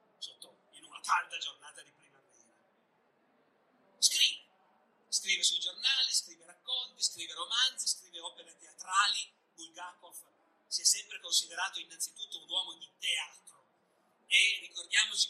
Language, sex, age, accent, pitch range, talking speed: Italian, male, 30-49, native, 175-235 Hz, 115 wpm